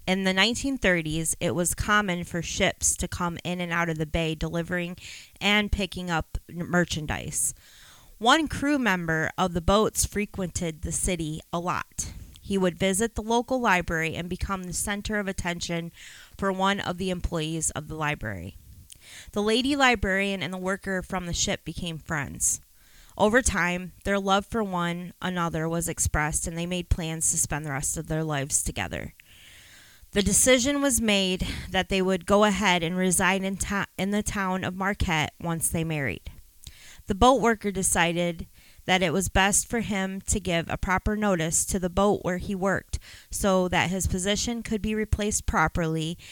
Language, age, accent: English, 20-39, American